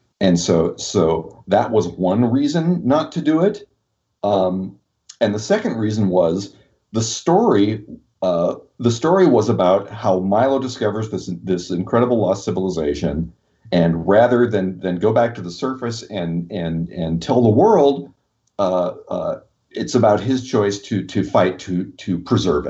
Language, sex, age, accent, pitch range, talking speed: English, male, 40-59, American, 95-120 Hz, 155 wpm